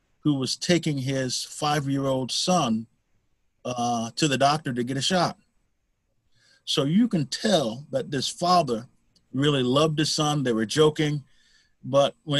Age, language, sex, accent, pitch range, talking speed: 40-59, English, male, American, 130-160 Hz, 155 wpm